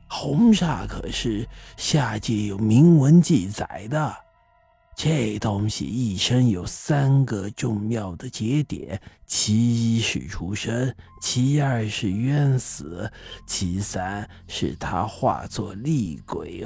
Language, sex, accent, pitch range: Chinese, male, native, 100-145 Hz